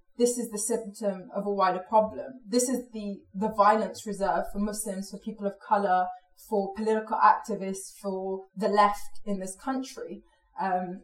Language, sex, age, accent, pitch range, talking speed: English, female, 20-39, British, 185-215 Hz, 165 wpm